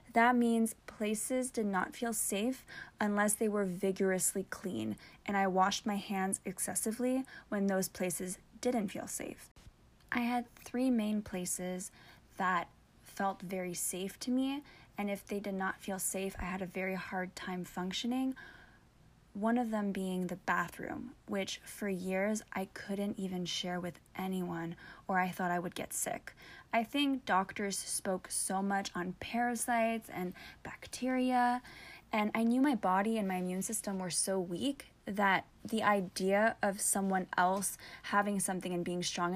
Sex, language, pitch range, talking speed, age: female, English, 185-225 Hz, 160 wpm, 20-39